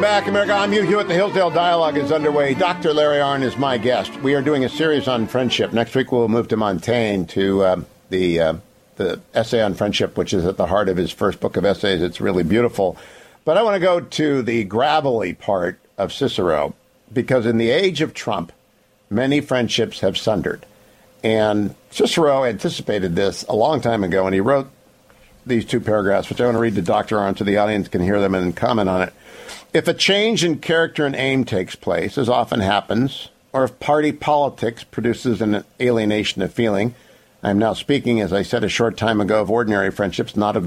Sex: male